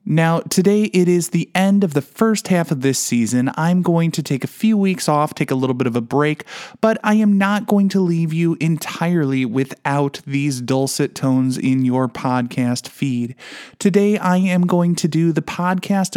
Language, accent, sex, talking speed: English, American, male, 195 wpm